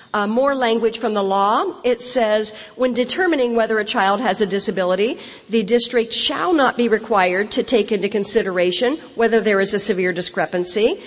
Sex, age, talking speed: female, 50-69, 175 wpm